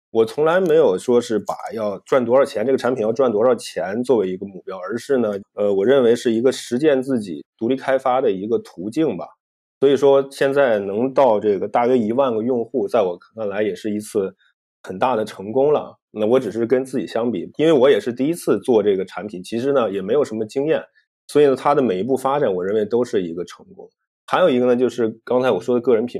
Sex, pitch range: male, 110-155 Hz